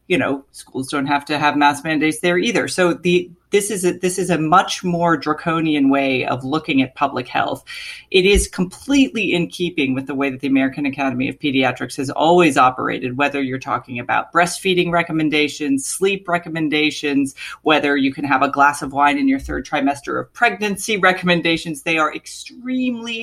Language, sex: English, female